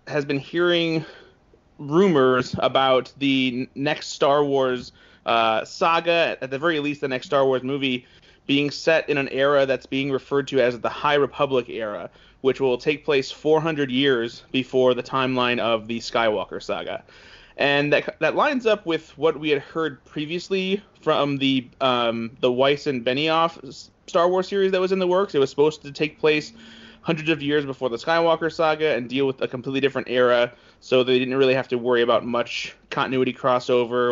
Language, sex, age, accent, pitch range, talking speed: English, male, 30-49, American, 125-160 Hz, 185 wpm